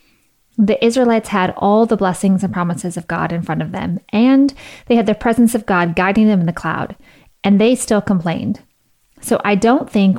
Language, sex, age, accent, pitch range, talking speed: English, female, 30-49, American, 185-230 Hz, 200 wpm